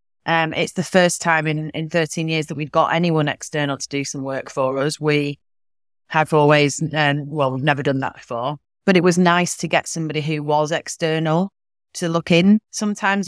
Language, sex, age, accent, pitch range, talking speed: English, female, 30-49, British, 140-170 Hz, 200 wpm